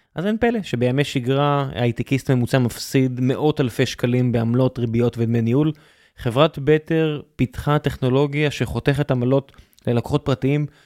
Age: 20-39